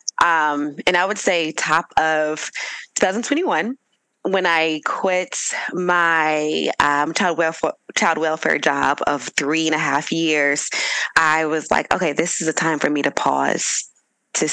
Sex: female